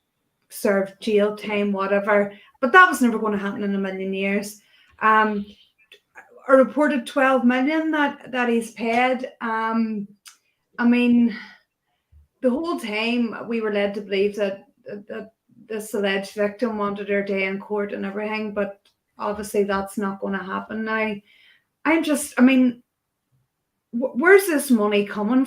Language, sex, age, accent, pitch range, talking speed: English, female, 30-49, Irish, 205-245 Hz, 155 wpm